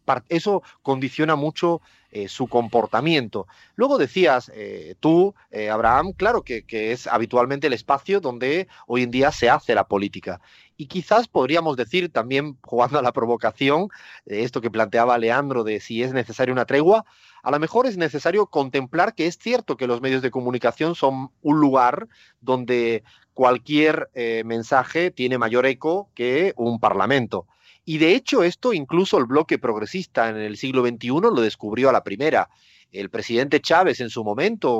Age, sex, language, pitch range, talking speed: 30-49, male, Spanish, 120-170 Hz, 165 wpm